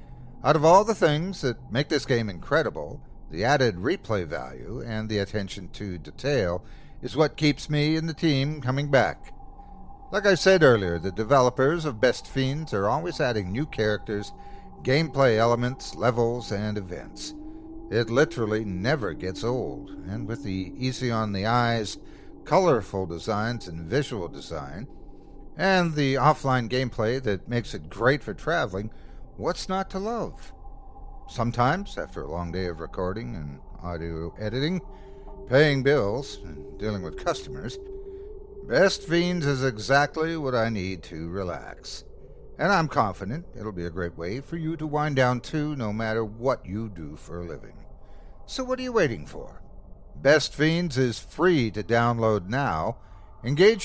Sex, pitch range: male, 100-150 Hz